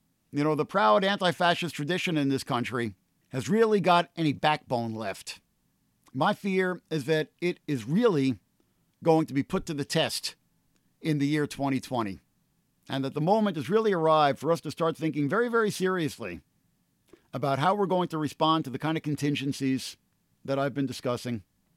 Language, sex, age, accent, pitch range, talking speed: English, male, 50-69, American, 135-170 Hz, 175 wpm